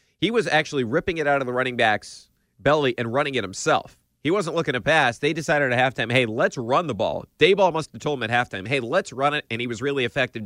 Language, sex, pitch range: English, male, 110-140 Hz